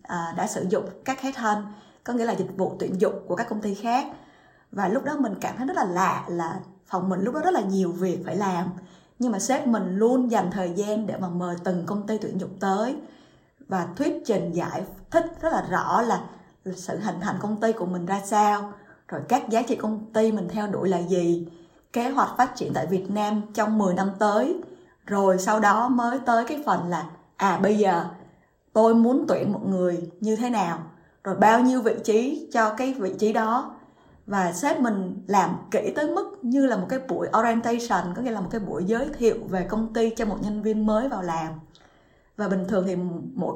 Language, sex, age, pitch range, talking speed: Vietnamese, female, 20-39, 185-235 Hz, 220 wpm